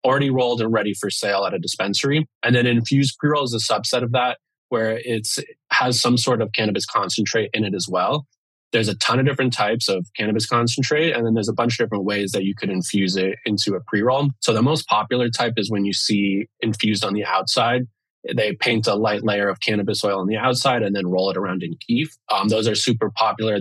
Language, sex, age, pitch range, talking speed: English, male, 20-39, 105-120 Hz, 235 wpm